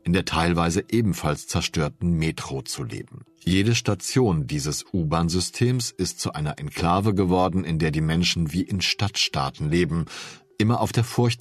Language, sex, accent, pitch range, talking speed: German, male, German, 85-110 Hz, 155 wpm